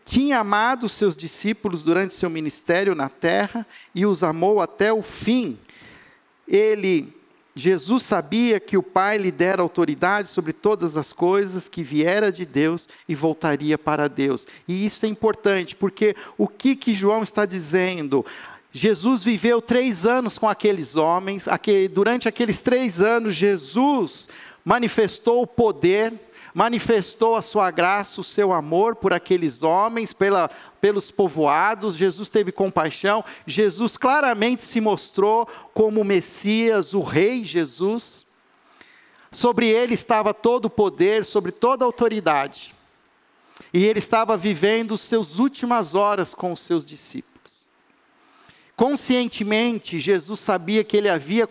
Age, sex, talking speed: 50-69, male, 135 wpm